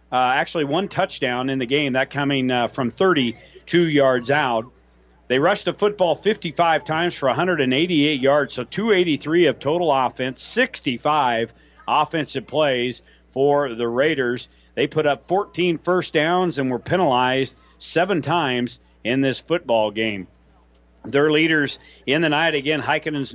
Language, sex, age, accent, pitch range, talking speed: English, male, 50-69, American, 125-155 Hz, 145 wpm